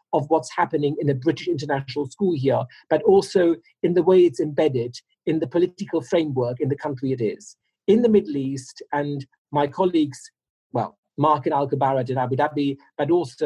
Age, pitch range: 40-59, 135-175 Hz